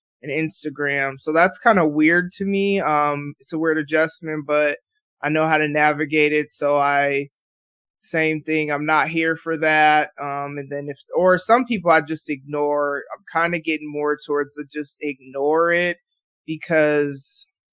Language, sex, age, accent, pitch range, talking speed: English, male, 20-39, American, 145-170 Hz, 170 wpm